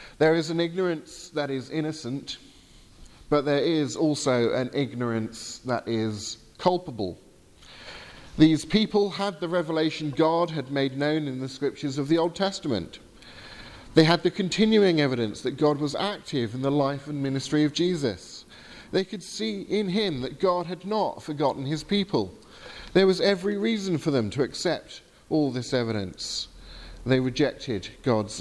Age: 40-59